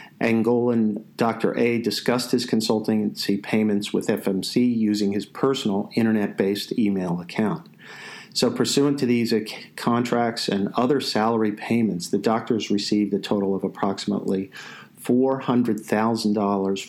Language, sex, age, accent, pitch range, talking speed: English, male, 50-69, American, 100-120 Hz, 115 wpm